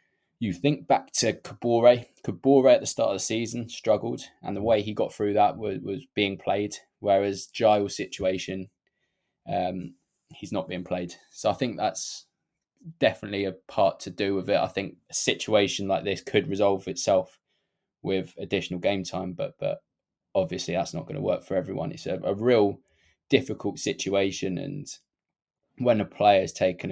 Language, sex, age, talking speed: English, male, 20-39, 175 wpm